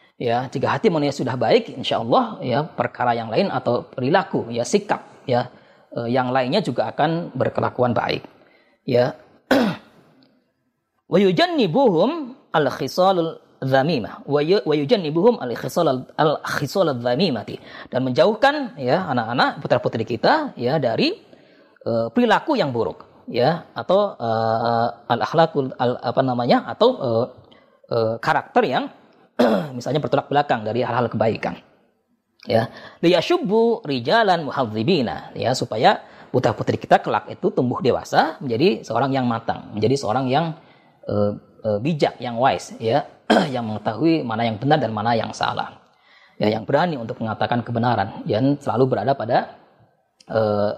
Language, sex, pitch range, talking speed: Indonesian, female, 115-165 Hz, 125 wpm